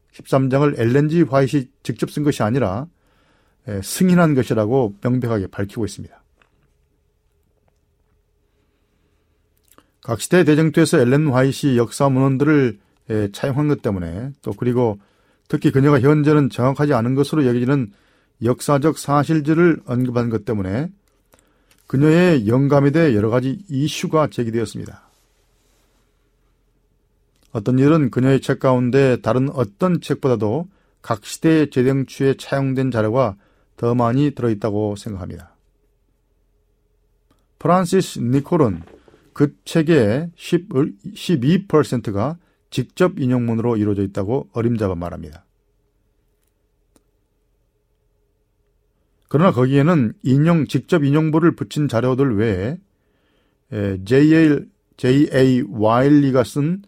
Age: 40-59